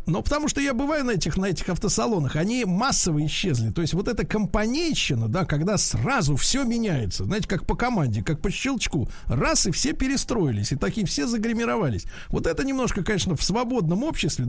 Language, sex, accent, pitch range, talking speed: Russian, male, native, 155-215 Hz, 190 wpm